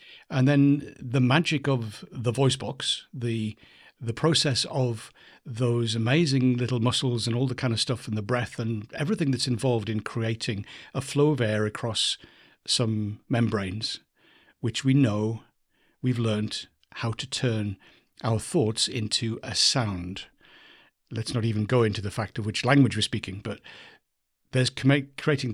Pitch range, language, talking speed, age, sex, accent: 110-130 Hz, English, 155 wpm, 60-79, male, British